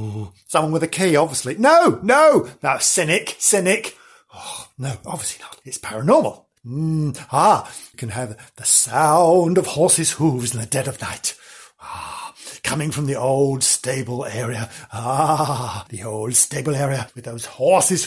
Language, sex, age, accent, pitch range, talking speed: English, male, 50-69, British, 125-185 Hz, 155 wpm